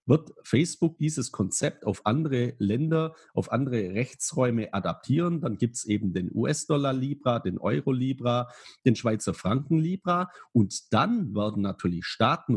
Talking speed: 130 wpm